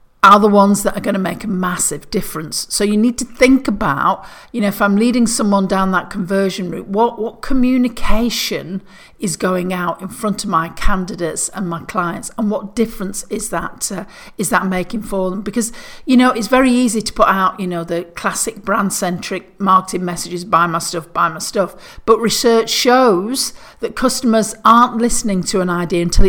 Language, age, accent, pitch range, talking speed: English, 50-69, British, 175-220 Hz, 190 wpm